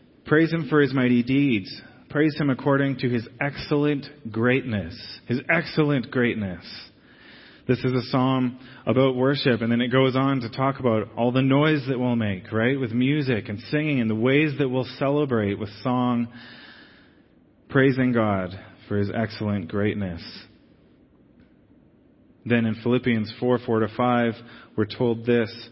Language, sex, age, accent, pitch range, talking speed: English, male, 30-49, American, 115-135 Hz, 150 wpm